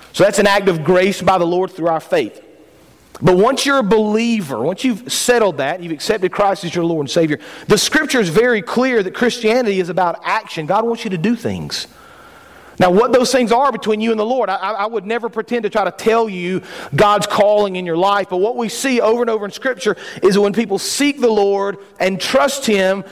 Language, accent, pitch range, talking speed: English, American, 190-245 Hz, 230 wpm